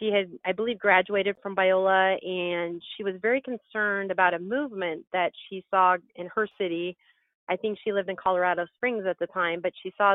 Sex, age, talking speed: female, 30-49, 200 wpm